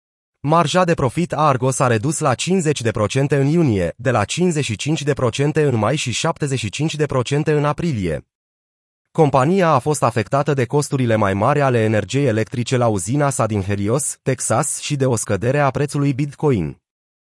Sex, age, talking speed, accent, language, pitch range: male, 30-49, 155 wpm, native, Romanian, 120-150 Hz